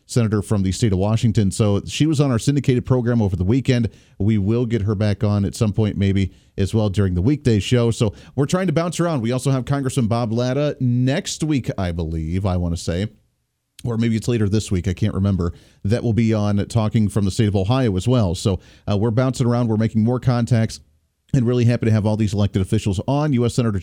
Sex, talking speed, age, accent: male, 235 wpm, 40-59, American